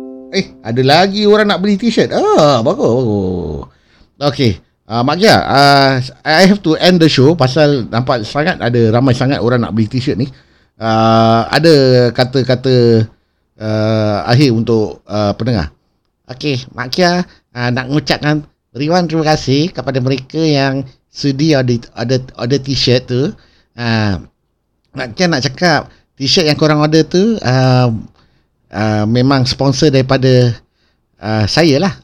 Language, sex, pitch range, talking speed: Malay, male, 115-150 Hz, 145 wpm